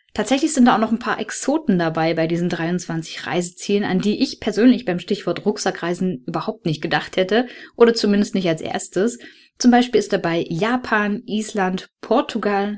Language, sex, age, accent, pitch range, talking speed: German, female, 10-29, German, 180-230 Hz, 170 wpm